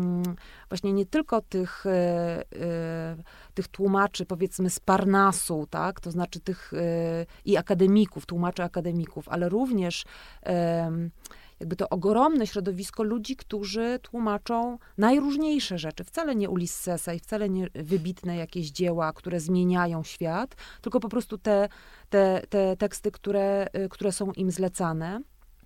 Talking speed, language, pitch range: 120 wpm, Polish, 175-210 Hz